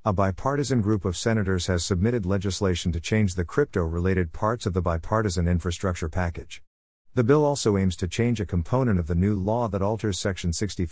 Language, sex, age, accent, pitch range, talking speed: English, male, 50-69, American, 90-110 Hz, 180 wpm